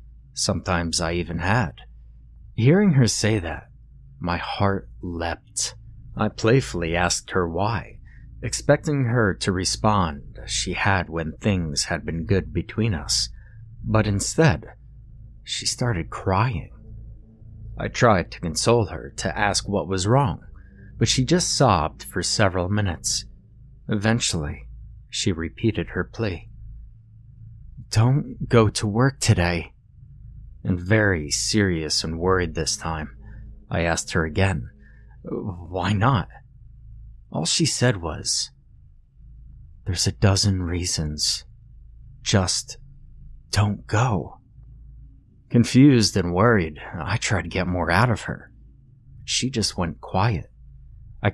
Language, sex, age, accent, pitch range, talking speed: English, male, 30-49, American, 85-115 Hz, 120 wpm